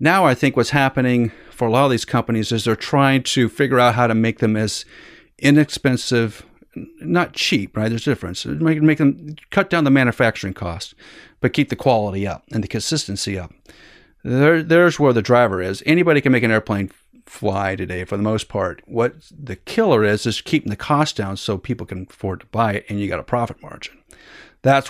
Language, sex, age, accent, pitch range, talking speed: English, male, 40-59, American, 110-140 Hz, 205 wpm